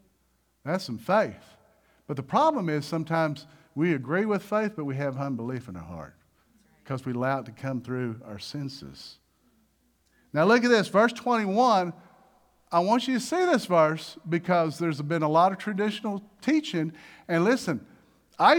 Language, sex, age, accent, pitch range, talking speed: English, male, 50-69, American, 150-220 Hz, 170 wpm